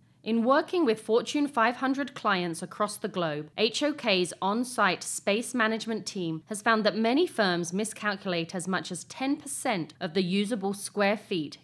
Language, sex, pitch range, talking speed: English, female, 175-225 Hz, 150 wpm